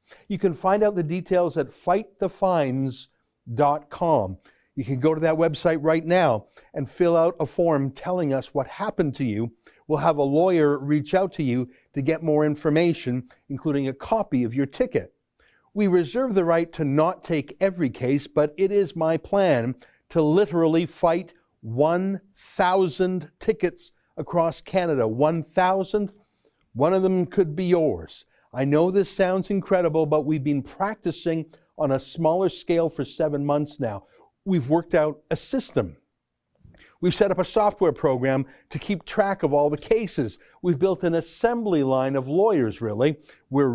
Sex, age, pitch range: male, 60-79, 145-180 Hz